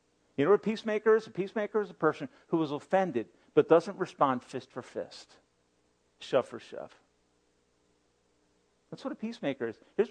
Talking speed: 170 wpm